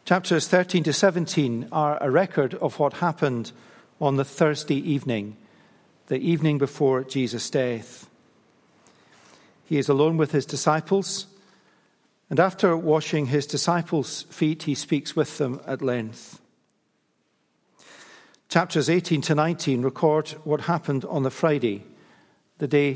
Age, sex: 50-69, male